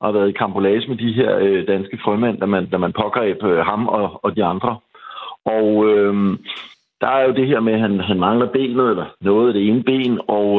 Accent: native